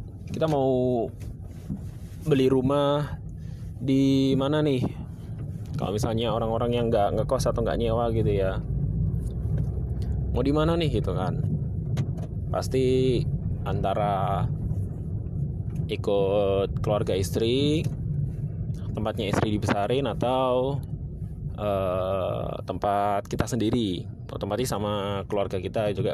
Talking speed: 95 wpm